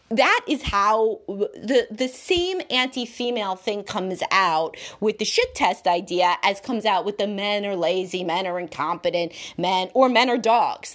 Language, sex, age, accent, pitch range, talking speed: English, female, 30-49, American, 175-245 Hz, 170 wpm